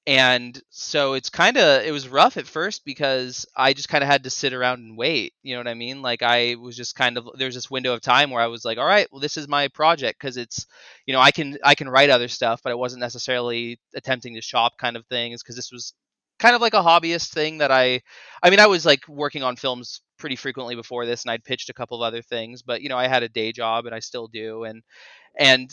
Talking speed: 265 wpm